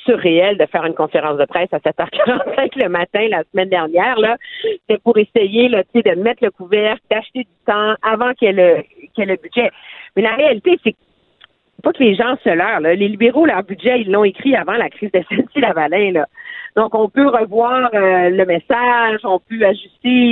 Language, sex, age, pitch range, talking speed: French, female, 50-69, 185-245 Hz, 205 wpm